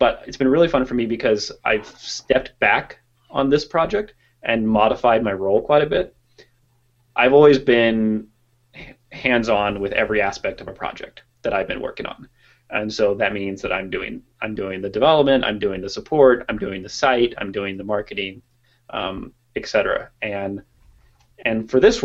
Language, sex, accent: English, male, American